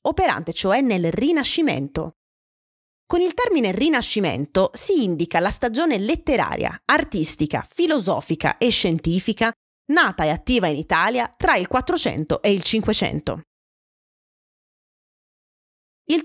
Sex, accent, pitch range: female, native, 175-275 Hz